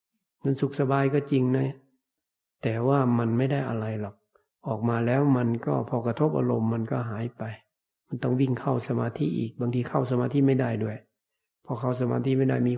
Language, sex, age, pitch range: Thai, male, 60-79, 115-135 Hz